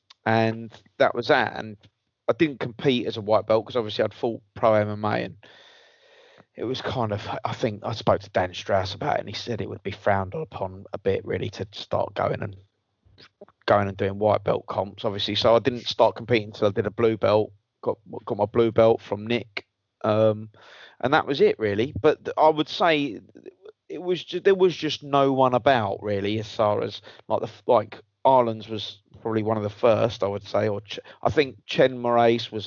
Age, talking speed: 30-49, 210 wpm